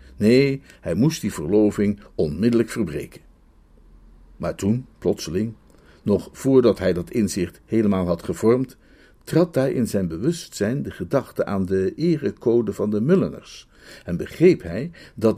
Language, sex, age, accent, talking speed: Dutch, male, 50-69, Dutch, 135 wpm